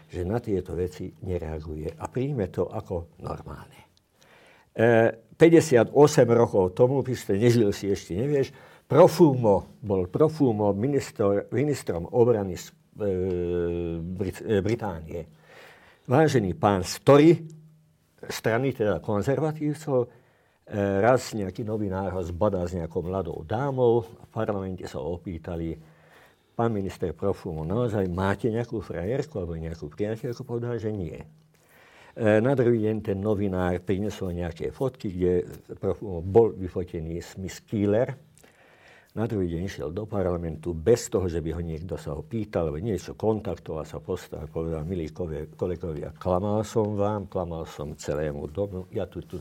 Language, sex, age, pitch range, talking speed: Slovak, male, 60-79, 90-120 Hz, 140 wpm